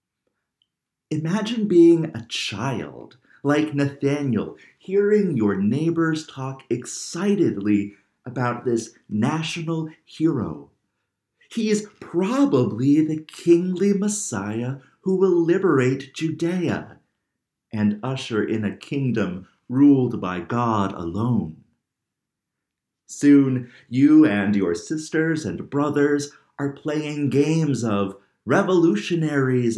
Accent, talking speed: American, 95 wpm